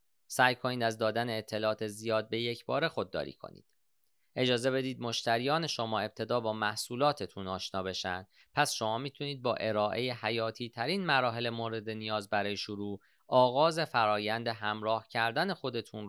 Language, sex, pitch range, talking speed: Persian, male, 105-125 Hz, 140 wpm